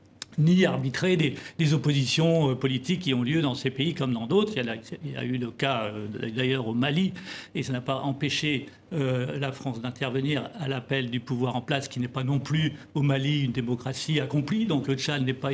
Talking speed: 220 wpm